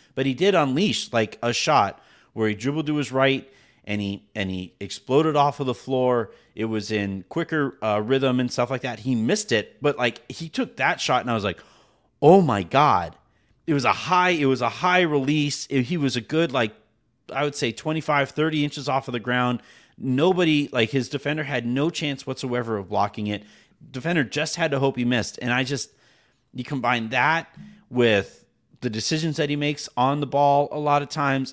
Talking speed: 210 wpm